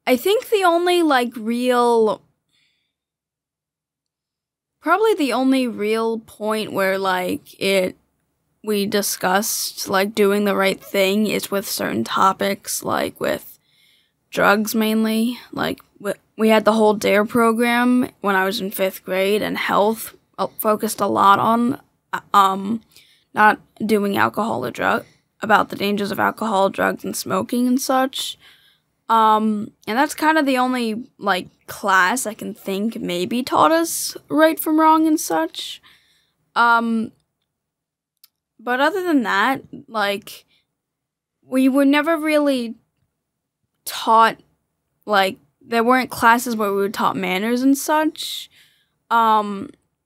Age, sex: 10-29, female